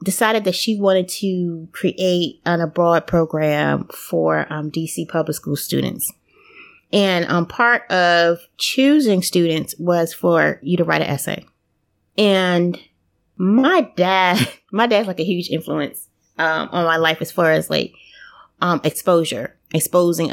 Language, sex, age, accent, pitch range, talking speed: English, female, 30-49, American, 165-200 Hz, 140 wpm